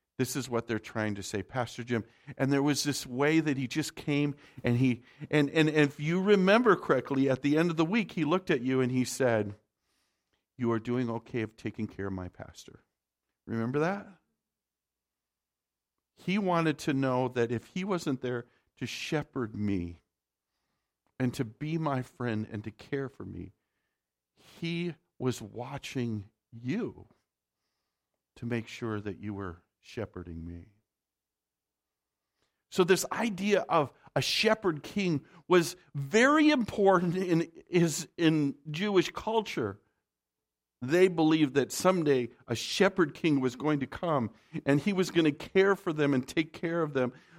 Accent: American